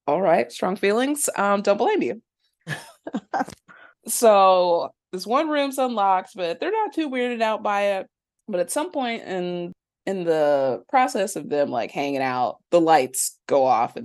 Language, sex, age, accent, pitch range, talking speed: English, female, 20-39, American, 150-225 Hz, 170 wpm